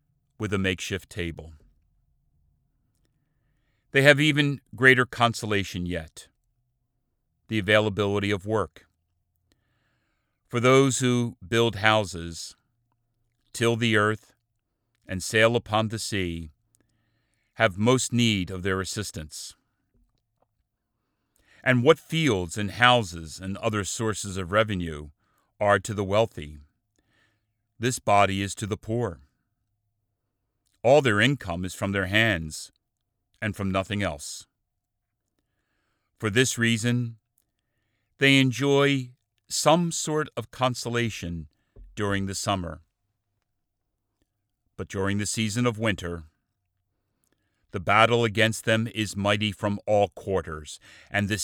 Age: 40-59